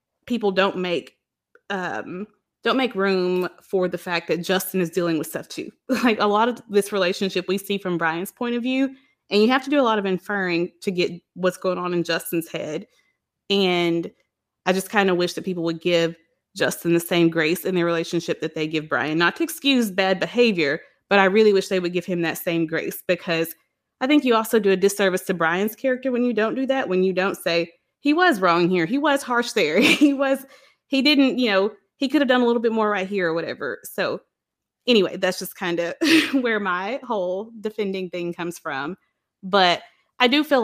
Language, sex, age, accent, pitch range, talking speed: English, female, 20-39, American, 175-230 Hz, 215 wpm